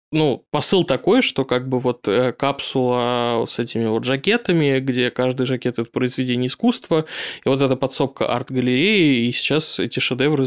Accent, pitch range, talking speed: native, 125-140 Hz, 155 wpm